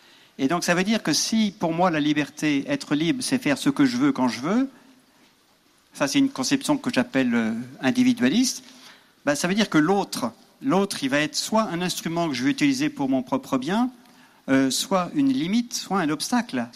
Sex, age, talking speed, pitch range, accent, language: male, 50-69, 200 wpm, 160-265 Hz, French, French